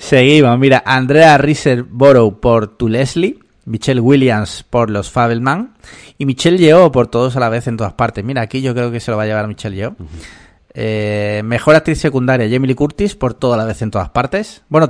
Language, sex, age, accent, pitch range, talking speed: Spanish, male, 30-49, Spanish, 110-145 Hz, 200 wpm